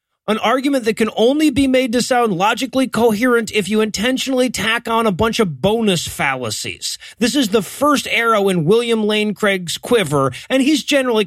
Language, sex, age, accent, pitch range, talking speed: English, male, 30-49, American, 175-240 Hz, 180 wpm